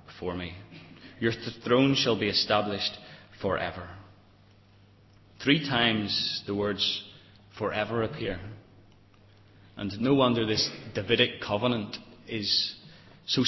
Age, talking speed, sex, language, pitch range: 30-49, 100 wpm, male, English, 100-115 Hz